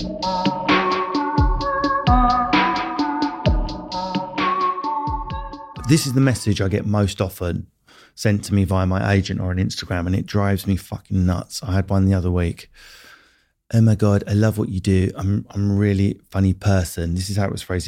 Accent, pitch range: British, 95-110 Hz